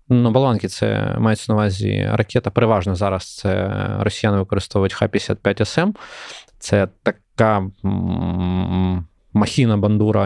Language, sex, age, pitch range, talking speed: Ukrainian, male, 20-39, 100-115 Hz, 105 wpm